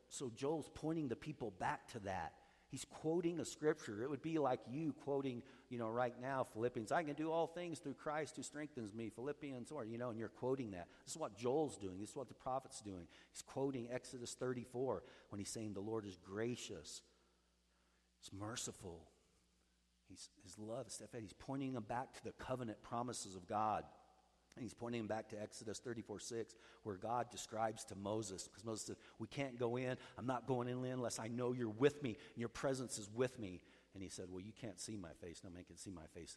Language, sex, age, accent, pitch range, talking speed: English, male, 50-69, American, 95-130 Hz, 215 wpm